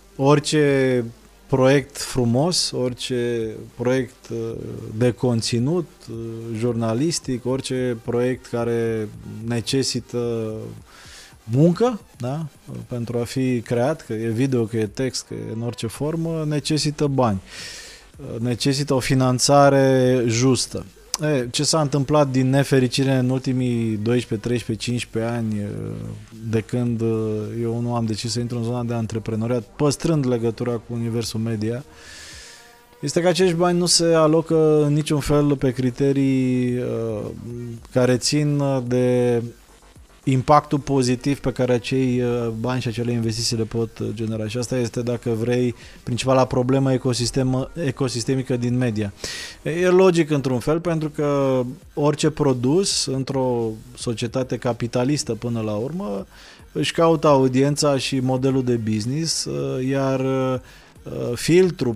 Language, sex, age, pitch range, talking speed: Romanian, male, 20-39, 120-140 Hz, 120 wpm